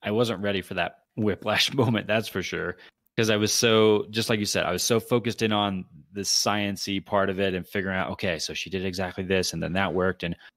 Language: English